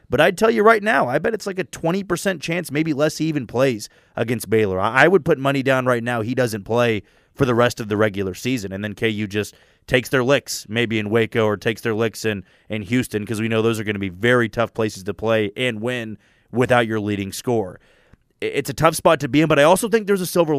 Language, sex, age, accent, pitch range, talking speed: English, male, 30-49, American, 110-135 Hz, 255 wpm